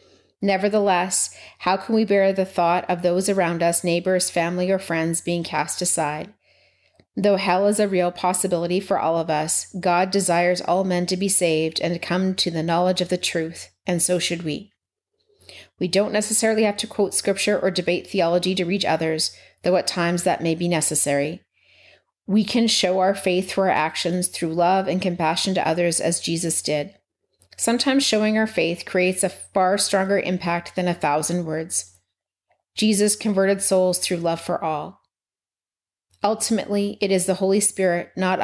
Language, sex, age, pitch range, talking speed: English, female, 30-49, 165-195 Hz, 175 wpm